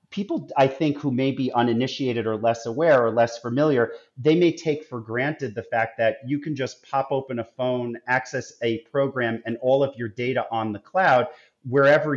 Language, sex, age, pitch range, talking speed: English, male, 40-59, 115-140 Hz, 195 wpm